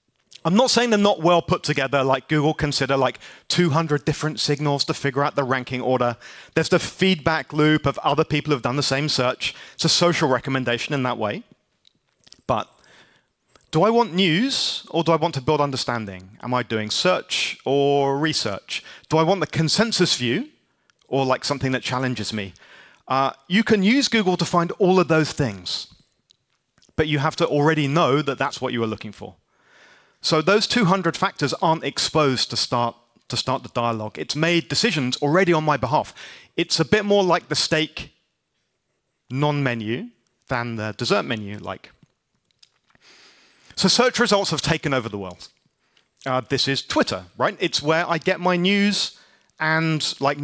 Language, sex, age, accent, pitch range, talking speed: English, male, 30-49, British, 130-175 Hz, 175 wpm